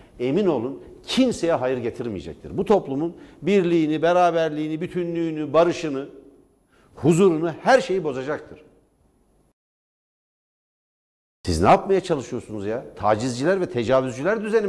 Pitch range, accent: 125-175 Hz, native